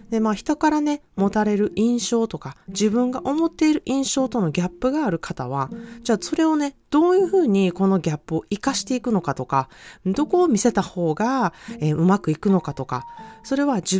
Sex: female